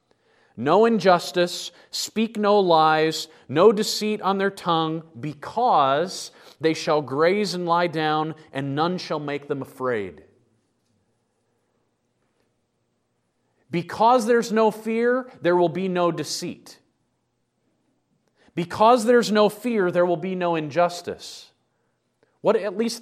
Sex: male